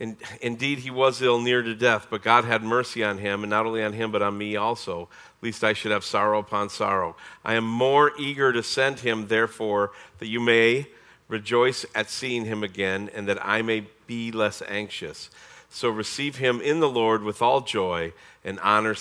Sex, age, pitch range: male, 50-69, 105-150 Hz